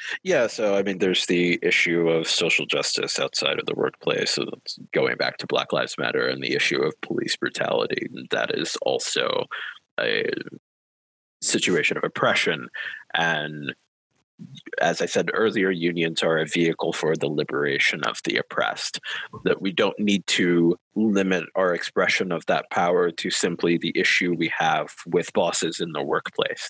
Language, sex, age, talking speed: English, male, 30-49, 155 wpm